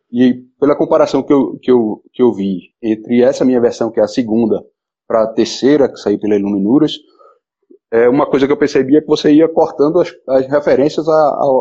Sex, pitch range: male, 115-160 Hz